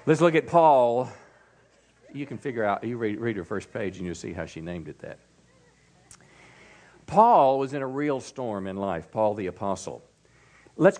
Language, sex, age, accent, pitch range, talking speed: English, male, 50-69, American, 130-165 Hz, 185 wpm